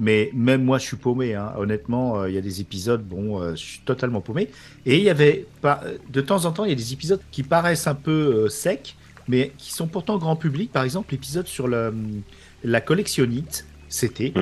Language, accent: French, French